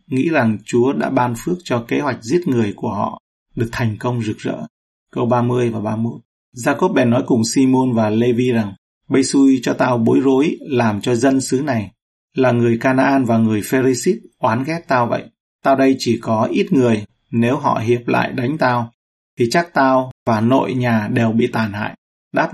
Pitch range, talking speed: 115-135 Hz, 195 wpm